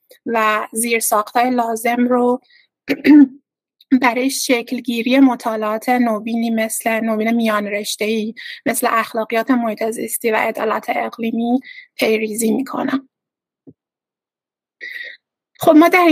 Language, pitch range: Persian, 225-255 Hz